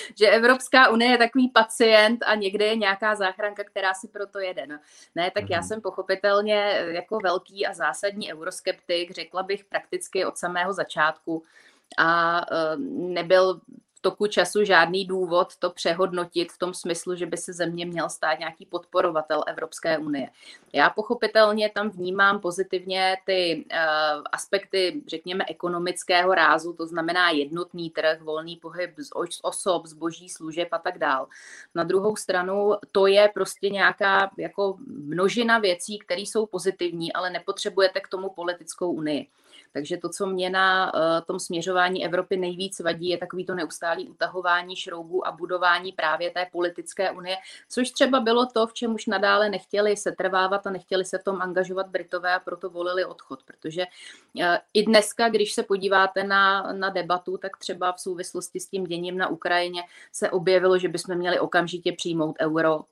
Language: Czech